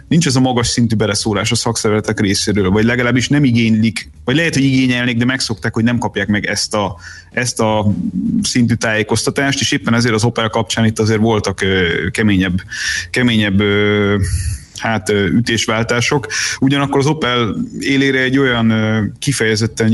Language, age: Hungarian, 30-49